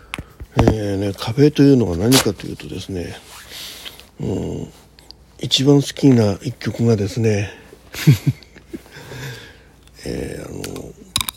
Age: 60-79